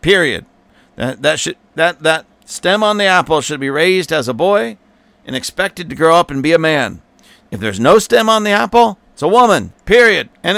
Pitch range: 155-215 Hz